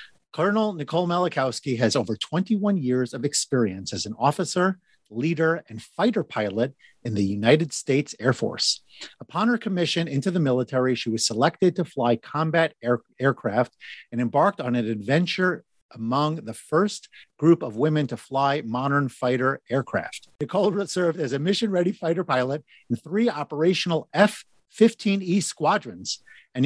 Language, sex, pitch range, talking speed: English, male, 120-175 Hz, 145 wpm